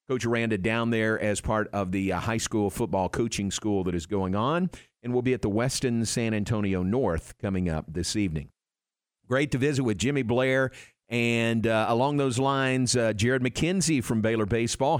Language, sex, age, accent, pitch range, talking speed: English, male, 50-69, American, 110-140 Hz, 190 wpm